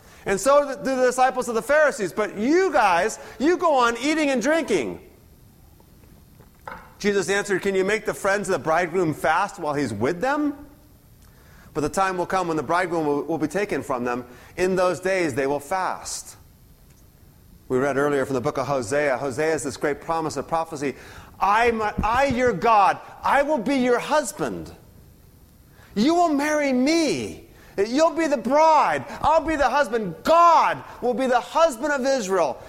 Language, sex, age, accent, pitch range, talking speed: English, male, 30-49, American, 180-290 Hz, 175 wpm